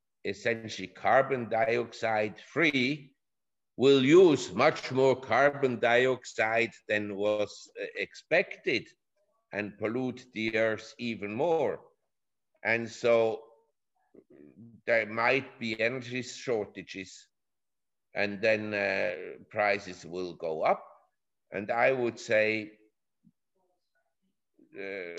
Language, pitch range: English, 110-135 Hz